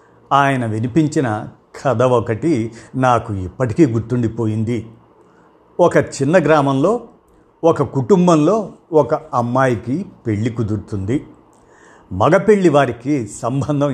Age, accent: 50-69, native